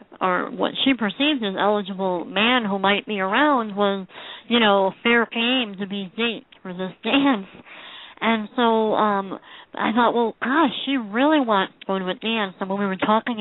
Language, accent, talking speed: English, American, 190 wpm